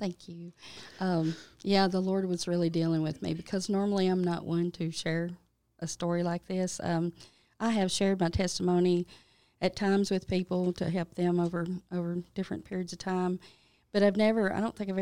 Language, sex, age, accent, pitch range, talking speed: English, female, 40-59, American, 170-190 Hz, 190 wpm